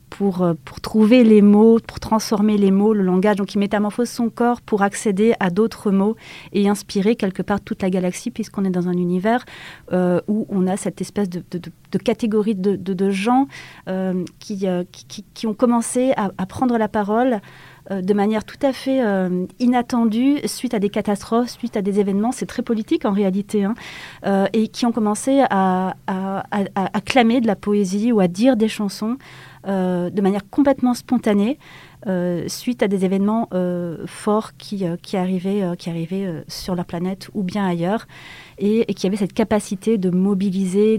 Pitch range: 180-215 Hz